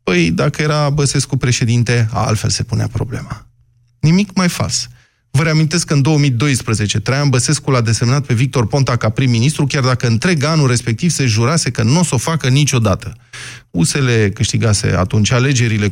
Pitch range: 110-145 Hz